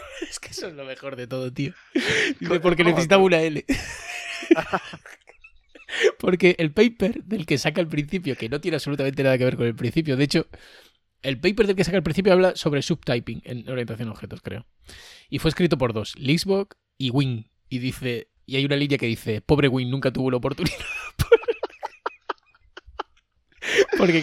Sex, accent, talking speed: male, Spanish, 175 wpm